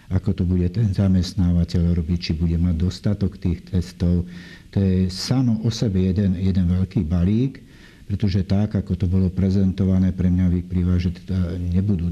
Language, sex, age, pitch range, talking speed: Slovak, male, 60-79, 90-100 Hz, 160 wpm